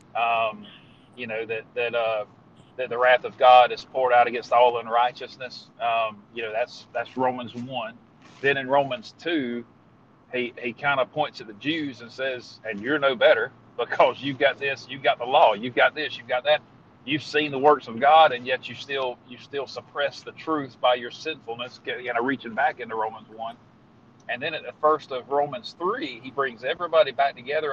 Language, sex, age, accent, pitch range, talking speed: English, male, 40-59, American, 120-145 Hz, 205 wpm